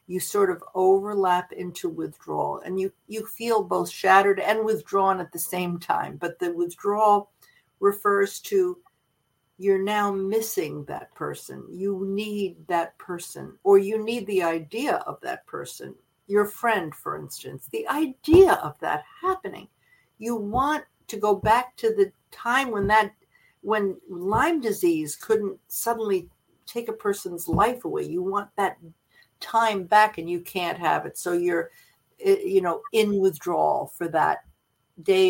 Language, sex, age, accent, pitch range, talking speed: English, female, 60-79, American, 175-230 Hz, 150 wpm